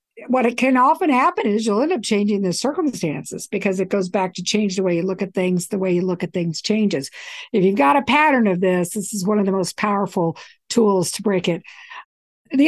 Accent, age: American, 60-79